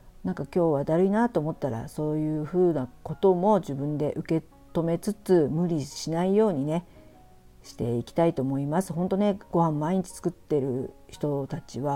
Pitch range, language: 150-190 Hz, Japanese